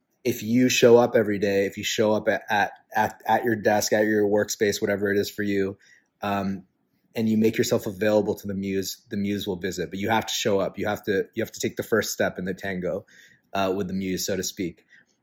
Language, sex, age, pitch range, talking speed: English, male, 30-49, 100-115 Hz, 250 wpm